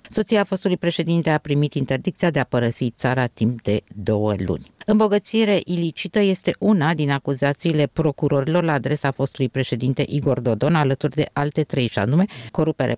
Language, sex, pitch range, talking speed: Romanian, female, 125-165 Hz, 155 wpm